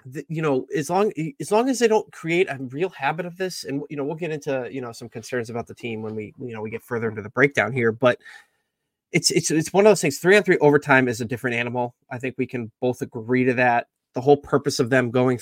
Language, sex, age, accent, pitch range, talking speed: English, male, 20-39, American, 125-150 Hz, 270 wpm